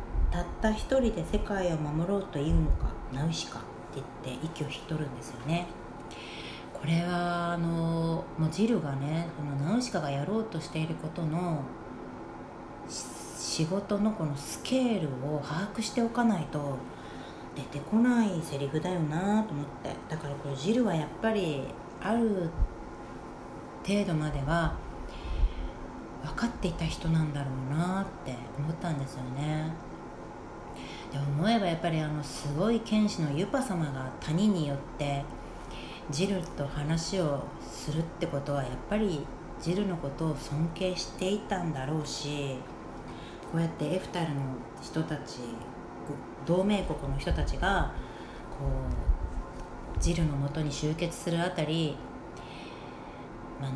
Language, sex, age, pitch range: Japanese, female, 40-59, 140-185 Hz